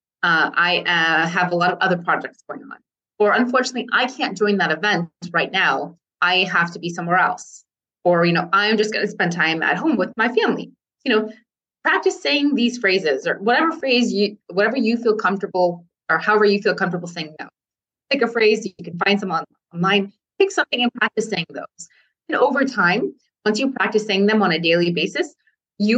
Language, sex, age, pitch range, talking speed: English, female, 20-39, 180-225 Hz, 205 wpm